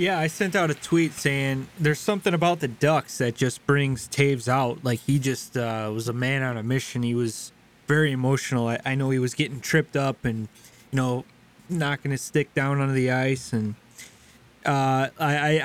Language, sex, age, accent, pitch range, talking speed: English, male, 20-39, American, 120-155 Hz, 205 wpm